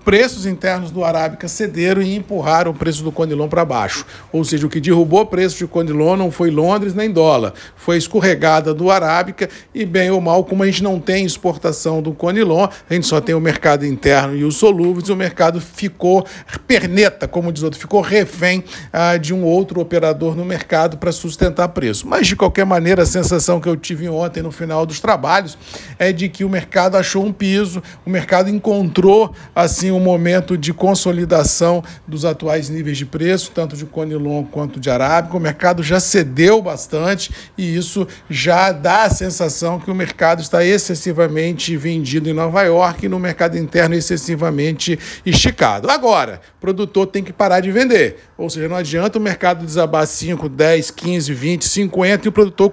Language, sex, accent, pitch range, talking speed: Portuguese, male, Brazilian, 160-190 Hz, 185 wpm